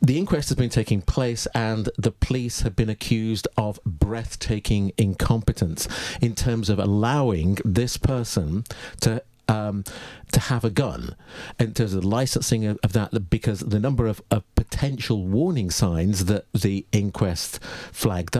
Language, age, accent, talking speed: English, 50-69, British, 145 wpm